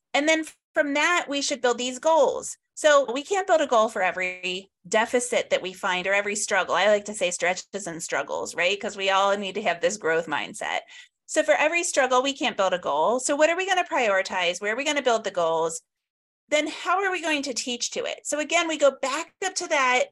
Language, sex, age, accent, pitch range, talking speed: English, female, 30-49, American, 210-305 Hz, 245 wpm